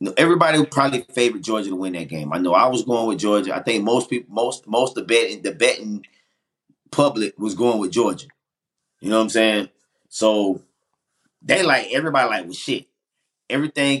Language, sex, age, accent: English, male, 30-49, American